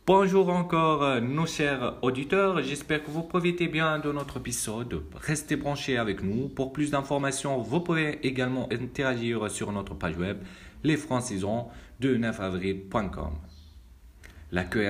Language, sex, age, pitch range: French, male, 40-59, 85-125 Hz